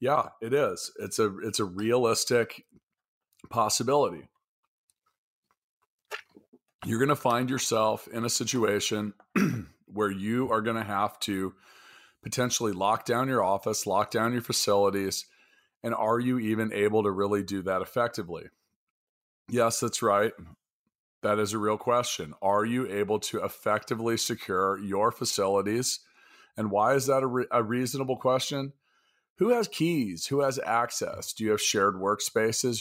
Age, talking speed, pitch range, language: 40-59, 145 wpm, 100-120 Hz, English